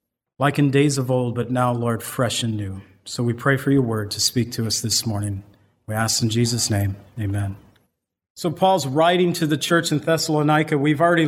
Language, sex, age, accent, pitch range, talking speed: English, male, 40-59, American, 135-160 Hz, 210 wpm